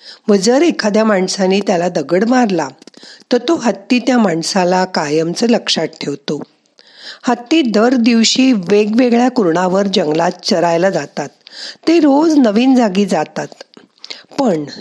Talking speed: 120 wpm